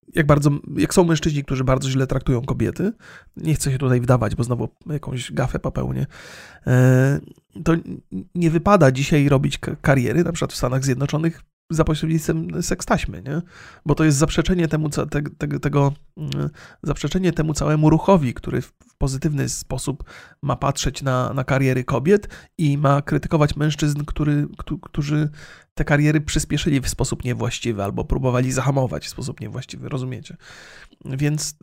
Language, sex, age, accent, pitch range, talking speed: Polish, male, 30-49, native, 125-155 Hz, 145 wpm